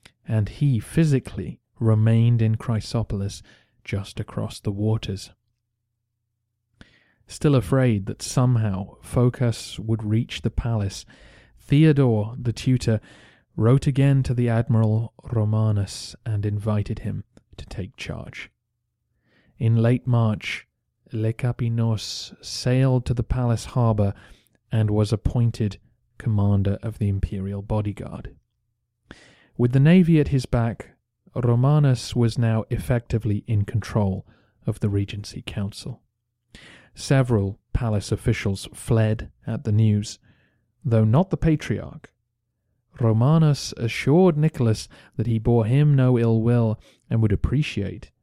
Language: English